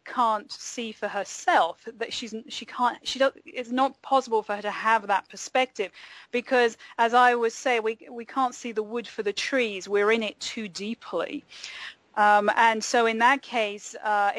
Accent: British